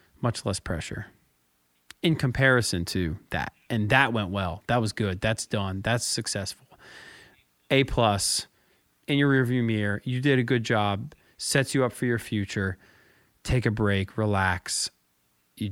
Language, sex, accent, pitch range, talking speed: English, male, American, 95-130 Hz, 155 wpm